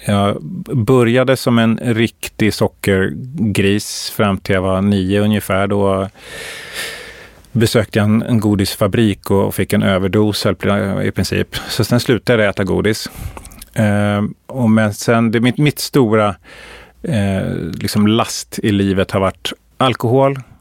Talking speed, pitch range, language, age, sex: 115 wpm, 95-110 Hz, Swedish, 30-49, male